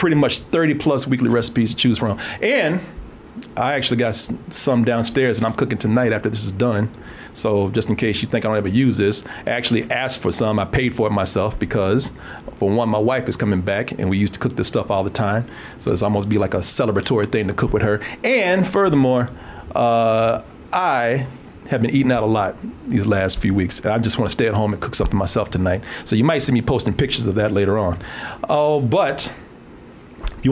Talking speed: 230 wpm